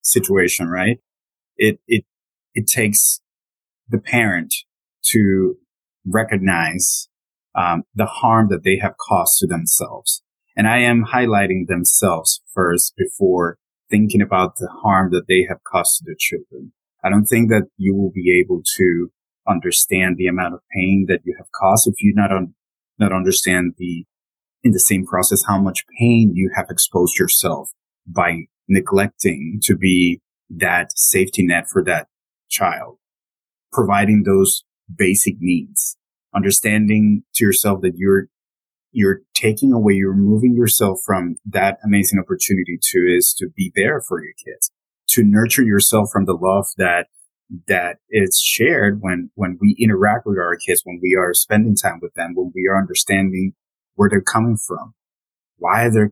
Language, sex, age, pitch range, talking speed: English, male, 30-49, 95-110 Hz, 155 wpm